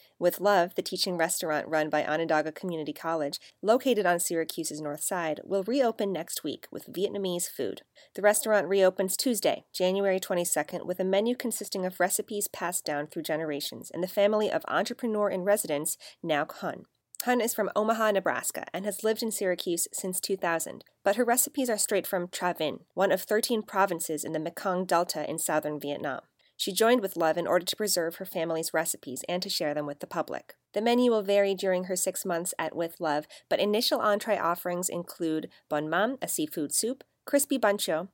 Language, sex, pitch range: English, female, 165-205 Hz